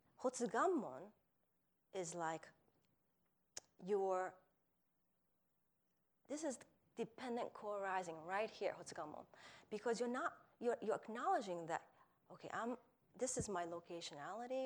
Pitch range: 185-295 Hz